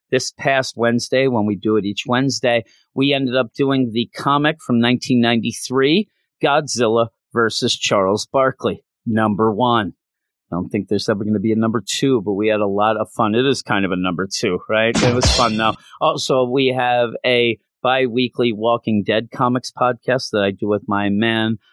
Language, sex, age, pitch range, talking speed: English, male, 40-59, 105-130 Hz, 190 wpm